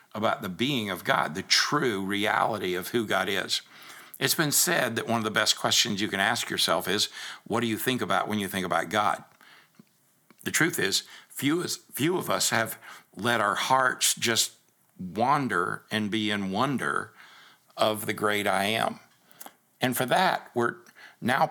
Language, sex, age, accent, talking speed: English, male, 60-79, American, 175 wpm